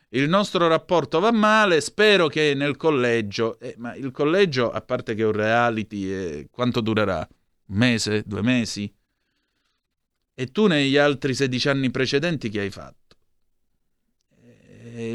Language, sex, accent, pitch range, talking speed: Italian, male, native, 110-145 Hz, 145 wpm